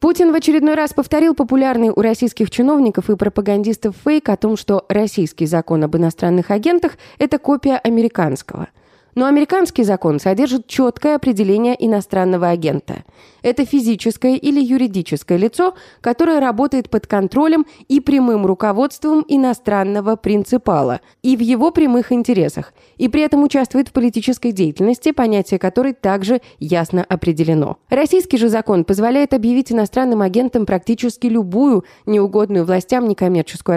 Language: Russian